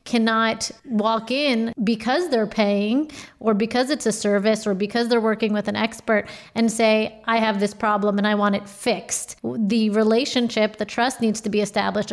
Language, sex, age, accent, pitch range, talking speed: English, female, 30-49, American, 210-235 Hz, 185 wpm